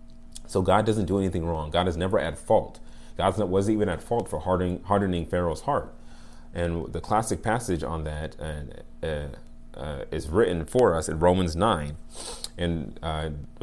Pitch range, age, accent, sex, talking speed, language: 75-95 Hz, 30-49, American, male, 180 wpm, English